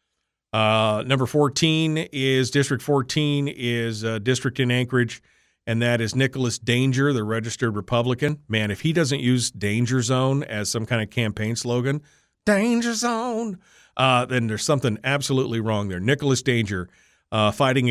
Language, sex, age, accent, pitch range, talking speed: English, male, 40-59, American, 105-130 Hz, 150 wpm